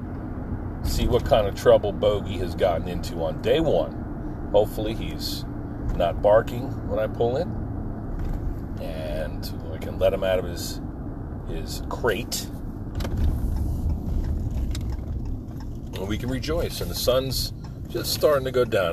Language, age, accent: English, 40-59, American